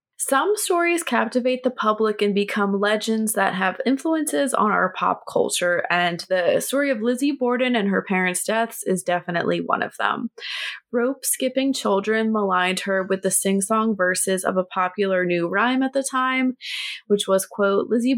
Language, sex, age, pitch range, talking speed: English, female, 20-39, 190-250 Hz, 165 wpm